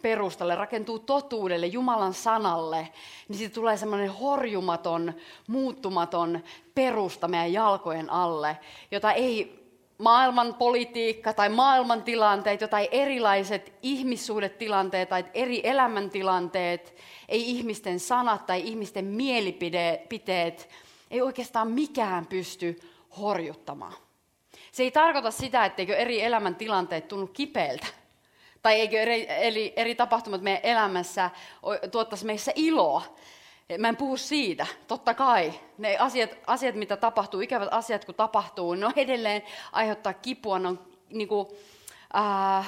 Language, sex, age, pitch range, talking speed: Finnish, female, 30-49, 175-235 Hz, 115 wpm